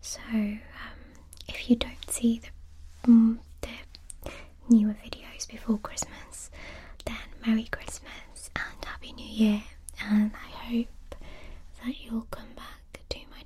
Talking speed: 130 wpm